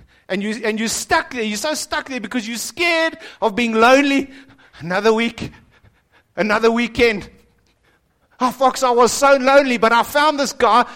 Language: English